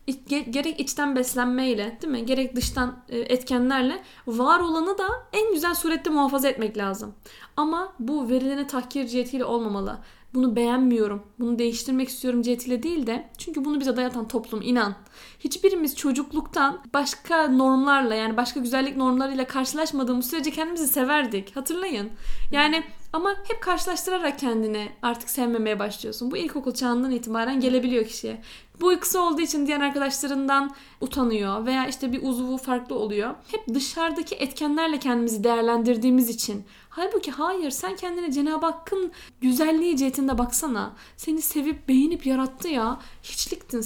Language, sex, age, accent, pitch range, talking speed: Turkish, female, 10-29, native, 245-310 Hz, 135 wpm